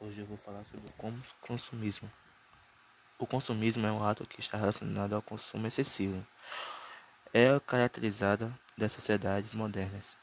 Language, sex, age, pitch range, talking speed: Portuguese, male, 20-39, 105-125 Hz, 135 wpm